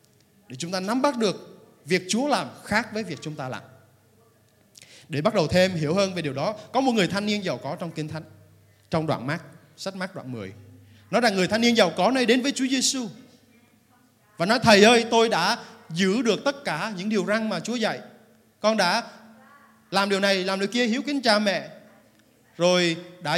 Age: 20-39